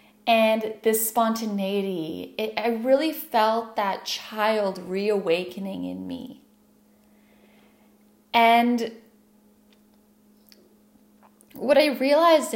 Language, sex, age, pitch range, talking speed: English, female, 10-29, 215-245 Hz, 75 wpm